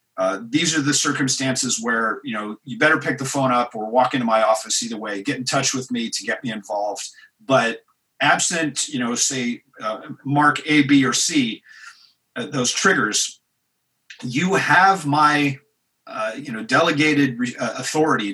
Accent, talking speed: American, 175 wpm